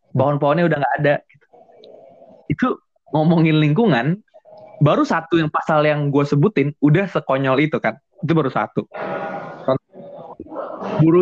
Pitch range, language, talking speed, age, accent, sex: 135-185 Hz, Indonesian, 120 wpm, 20-39, native, male